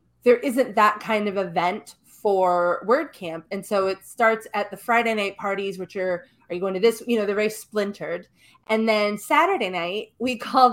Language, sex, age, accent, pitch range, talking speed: English, female, 20-39, American, 195-250 Hz, 195 wpm